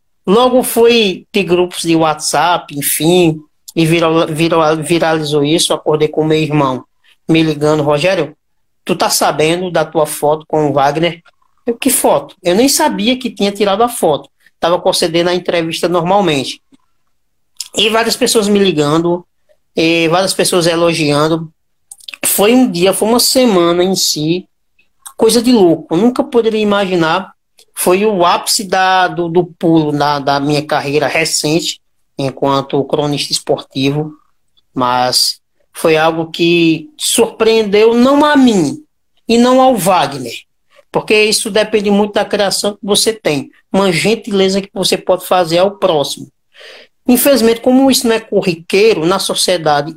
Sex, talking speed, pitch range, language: male, 140 wpm, 160-220 Hz, Portuguese